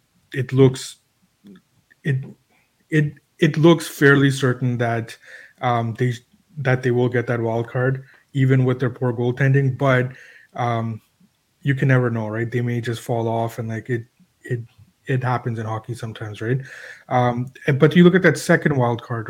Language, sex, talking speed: English, male, 170 wpm